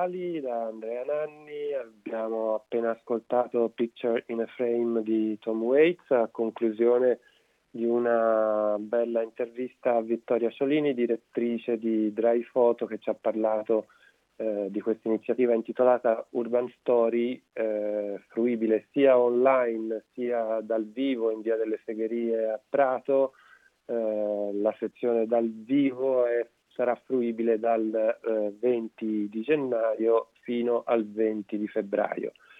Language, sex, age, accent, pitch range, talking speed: Italian, male, 30-49, native, 110-125 Hz, 125 wpm